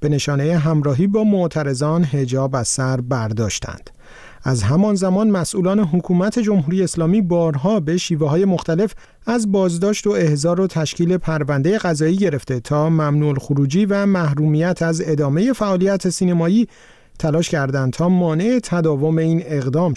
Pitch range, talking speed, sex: 150-190 Hz, 140 wpm, male